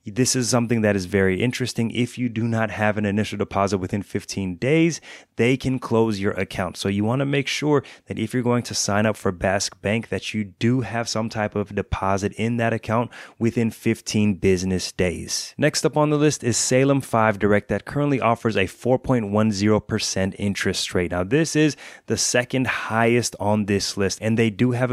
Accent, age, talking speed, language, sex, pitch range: American, 20-39, 200 wpm, English, male, 100-120 Hz